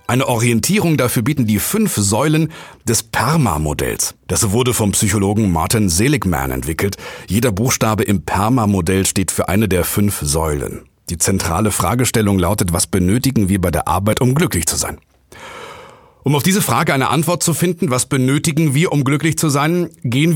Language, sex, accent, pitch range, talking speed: German, male, German, 100-140 Hz, 165 wpm